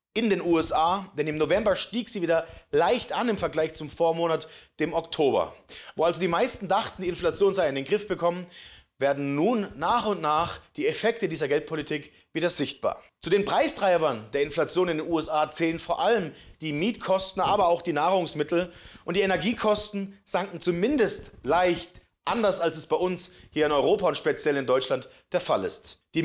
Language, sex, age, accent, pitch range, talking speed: German, male, 40-59, German, 160-200 Hz, 180 wpm